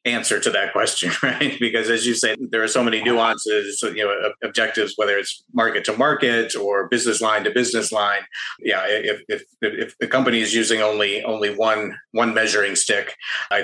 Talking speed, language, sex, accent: 190 wpm, English, male, American